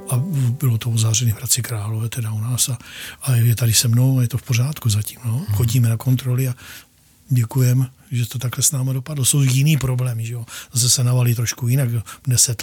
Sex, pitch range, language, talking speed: male, 120-150 Hz, Czech, 200 wpm